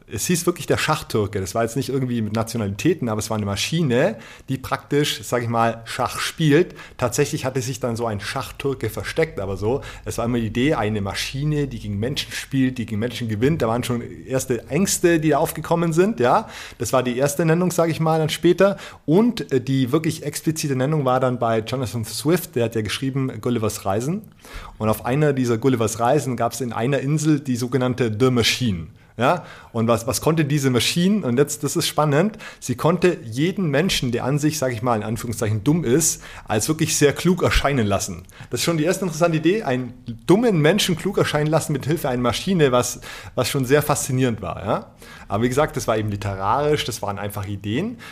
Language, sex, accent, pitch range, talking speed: German, male, German, 115-150 Hz, 210 wpm